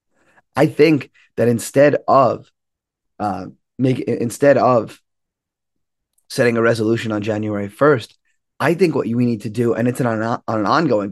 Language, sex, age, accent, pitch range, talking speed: English, male, 20-39, American, 105-125 Hz, 155 wpm